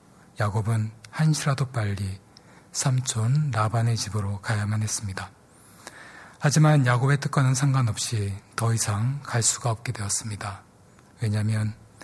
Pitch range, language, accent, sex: 105-125 Hz, Korean, native, male